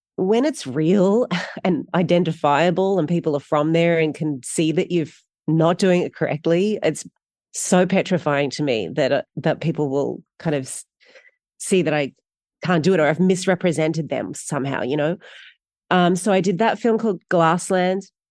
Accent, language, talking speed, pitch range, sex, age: Australian, English, 165 wpm, 155-190 Hz, female, 30-49